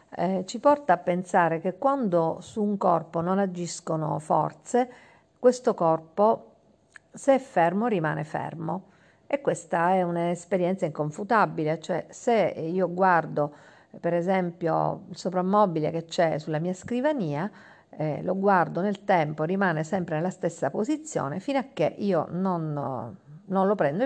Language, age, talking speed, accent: Italian, 50-69, 140 wpm, native